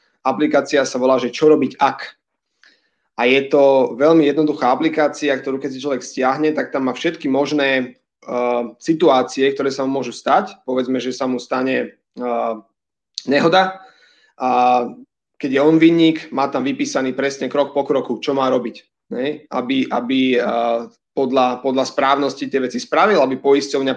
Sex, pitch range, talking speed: male, 125-150 Hz, 160 wpm